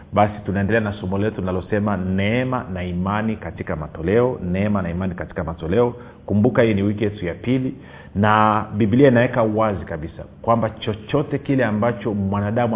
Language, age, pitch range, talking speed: Swahili, 40-59, 95-120 Hz, 155 wpm